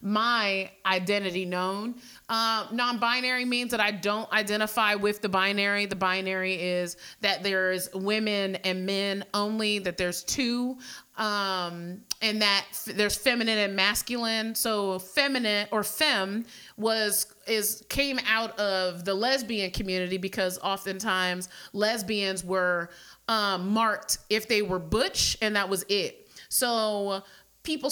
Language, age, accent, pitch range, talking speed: English, 30-49, American, 190-225 Hz, 135 wpm